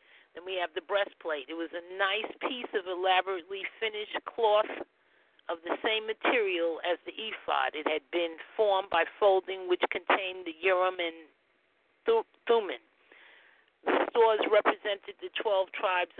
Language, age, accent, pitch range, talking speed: English, 40-59, American, 175-230 Hz, 145 wpm